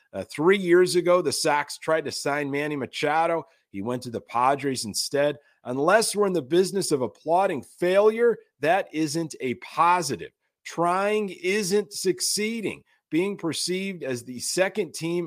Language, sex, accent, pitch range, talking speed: English, male, American, 135-180 Hz, 150 wpm